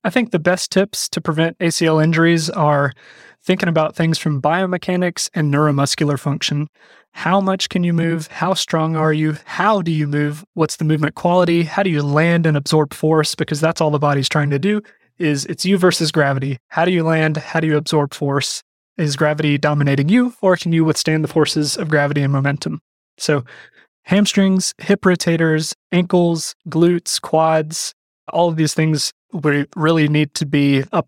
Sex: male